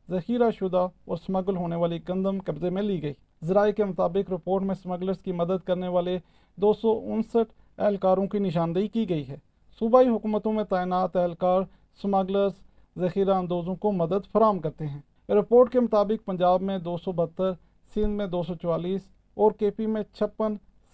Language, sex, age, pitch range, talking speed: Urdu, male, 40-59, 180-215 Hz, 160 wpm